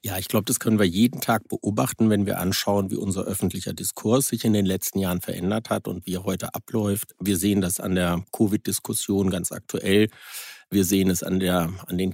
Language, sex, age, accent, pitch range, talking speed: German, male, 60-79, German, 95-115 Hz, 215 wpm